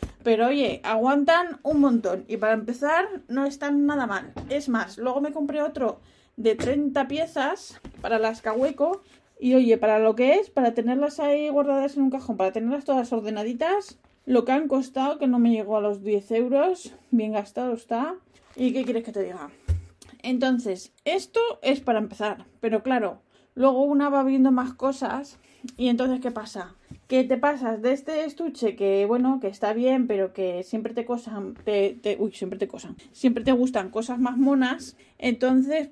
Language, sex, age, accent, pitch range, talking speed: Spanish, female, 20-39, Spanish, 225-275 Hz, 180 wpm